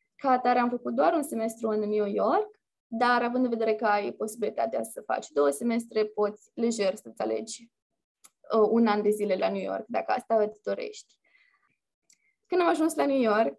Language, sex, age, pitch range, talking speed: Romanian, female, 20-39, 215-265 Hz, 190 wpm